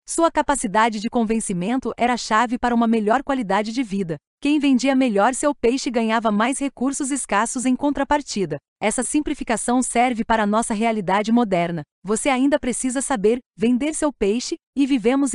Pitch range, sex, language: 215-270 Hz, female, Portuguese